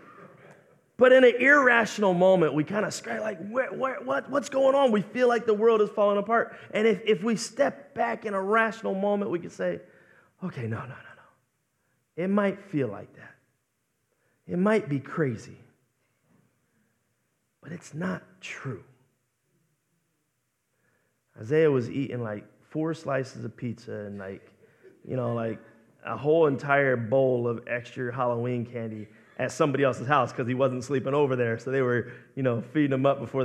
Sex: male